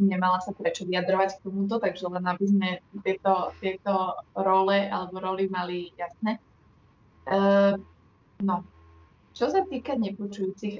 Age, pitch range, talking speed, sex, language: 20-39, 175-200 Hz, 130 wpm, female, Slovak